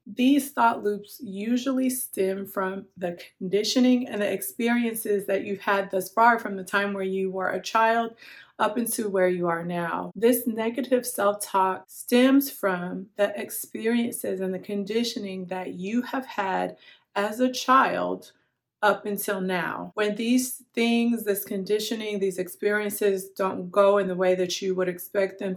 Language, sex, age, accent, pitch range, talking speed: English, female, 30-49, American, 185-225 Hz, 155 wpm